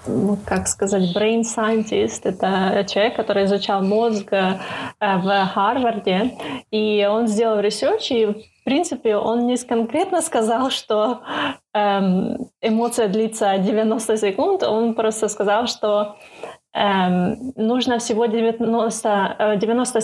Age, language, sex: 20-39, Russian, female